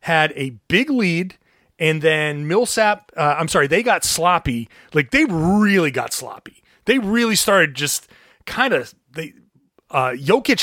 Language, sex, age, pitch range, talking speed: English, male, 30-49, 145-190 Hz, 140 wpm